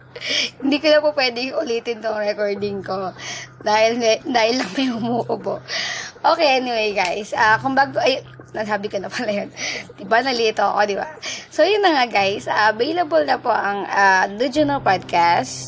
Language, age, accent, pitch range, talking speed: Filipino, 20-39, native, 200-250 Hz, 170 wpm